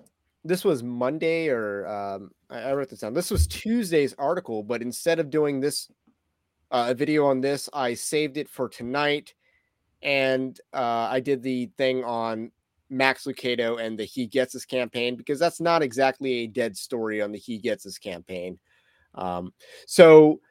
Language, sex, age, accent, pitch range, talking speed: English, male, 30-49, American, 120-160 Hz, 170 wpm